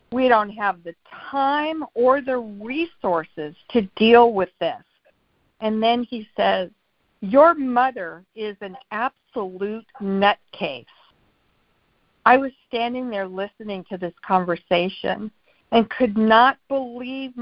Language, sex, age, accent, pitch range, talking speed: English, female, 50-69, American, 200-260 Hz, 115 wpm